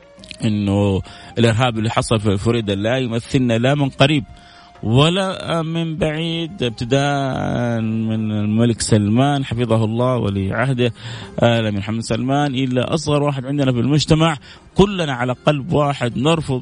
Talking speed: 130 wpm